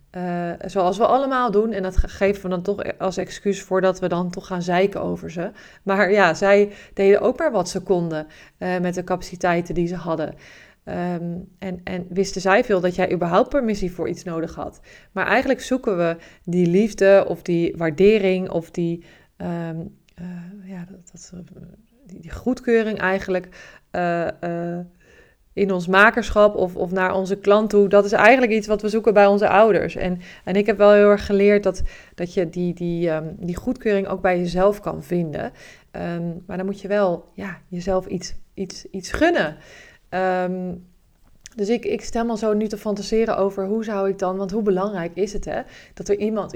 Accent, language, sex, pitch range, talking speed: Dutch, Dutch, female, 180-205 Hz, 185 wpm